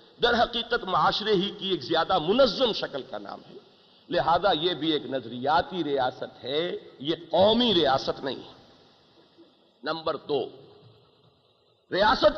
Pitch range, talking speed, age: 160-270 Hz, 130 wpm, 50-69